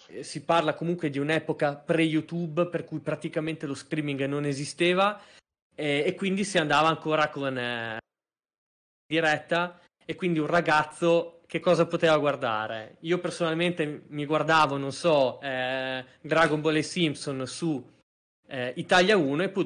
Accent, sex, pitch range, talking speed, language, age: native, male, 135-170 Hz, 145 wpm, Italian, 20-39